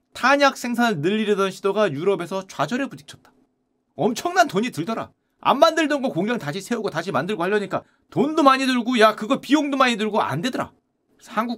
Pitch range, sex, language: 200-265 Hz, male, Korean